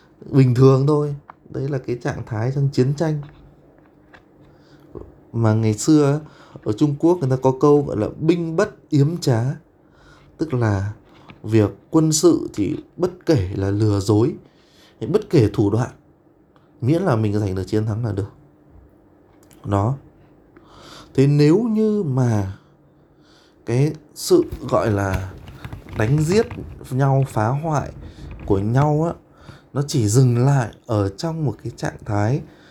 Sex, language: male, Vietnamese